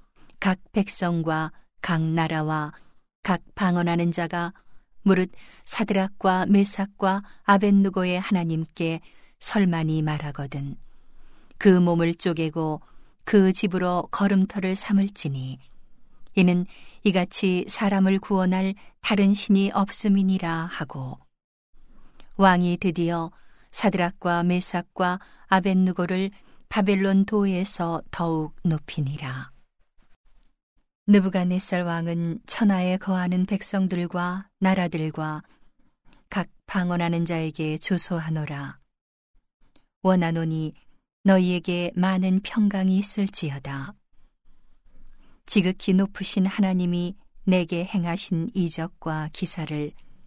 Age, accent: 40-59, native